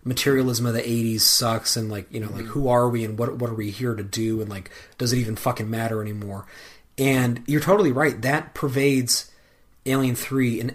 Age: 30-49